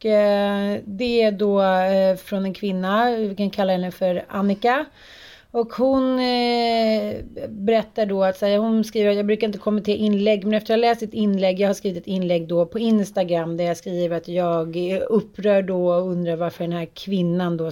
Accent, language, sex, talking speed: native, Swedish, female, 185 wpm